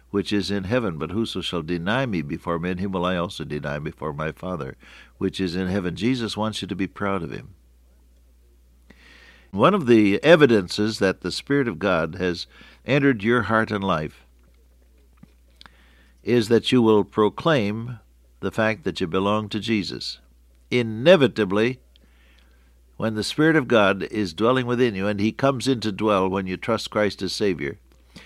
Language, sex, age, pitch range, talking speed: English, male, 60-79, 75-115 Hz, 170 wpm